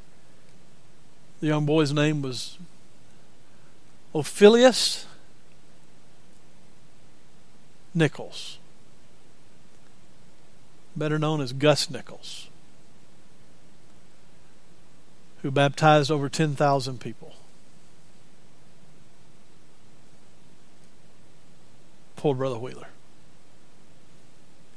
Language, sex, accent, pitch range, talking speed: English, male, American, 145-185 Hz, 50 wpm